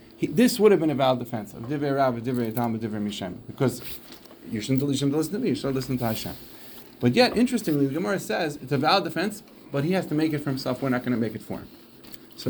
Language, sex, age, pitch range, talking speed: English, male, 40-59, 130-170 Hz, 230 wpm